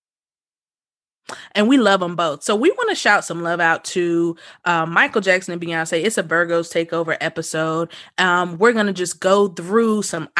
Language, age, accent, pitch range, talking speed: English, 20-39, American, 170-215 Hz, 185 wpm